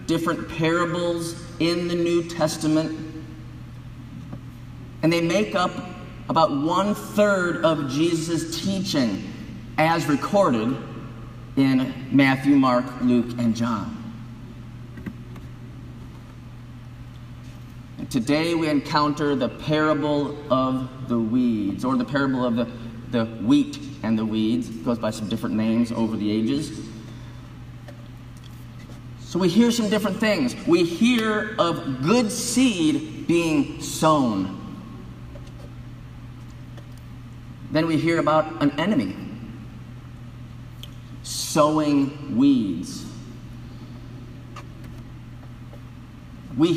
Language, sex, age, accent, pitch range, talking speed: English, male, 30-49, American, 120-170 Hz, 90 wpm